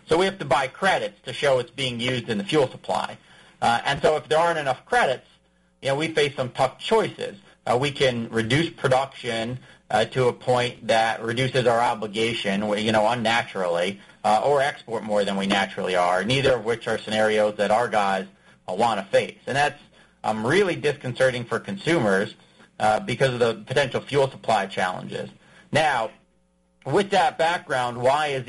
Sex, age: male, 40-59